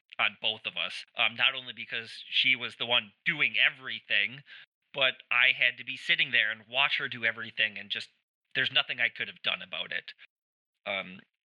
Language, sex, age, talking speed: English, male, 30-49, 195 wpm